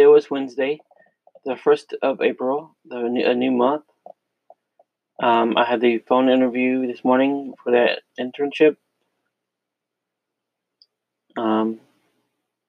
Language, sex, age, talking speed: English, male, 30-49, 110 wpm